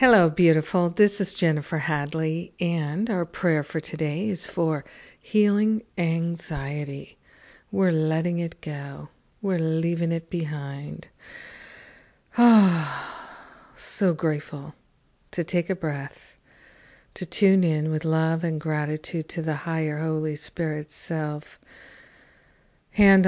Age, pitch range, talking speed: 50-69, 155-175 Hz, 115 wpm